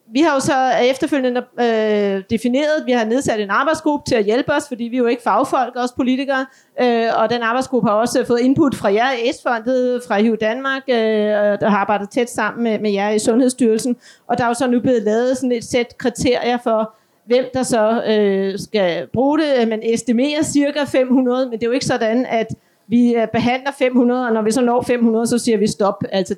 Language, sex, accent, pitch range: Danish, female, native, 215-255 Hz